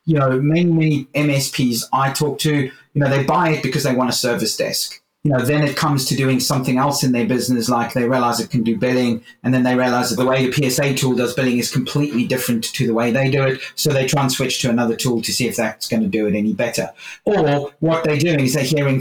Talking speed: 265 wpm